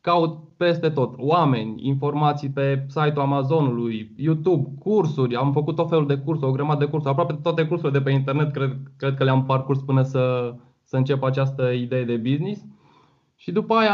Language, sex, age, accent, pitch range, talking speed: Romanian, male, 20-39, native, 135-170 Hz, 180 wpm